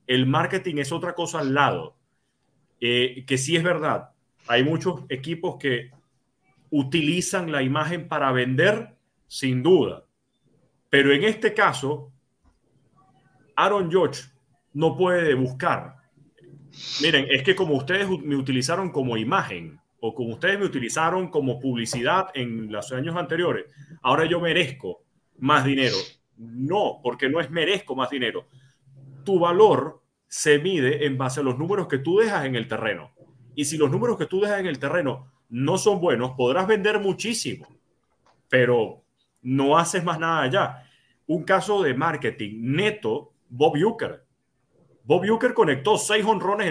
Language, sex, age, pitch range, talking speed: Spanish, male, 40-59, 130-180 Hz, 145 wpm